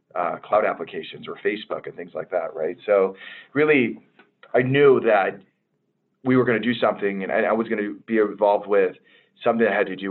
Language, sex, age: English, male, 40-59